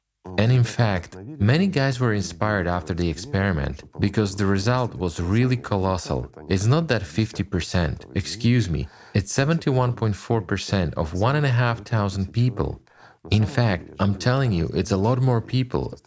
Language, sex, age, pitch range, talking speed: English, male, 40-59, 90-115 Hz, 160 wpm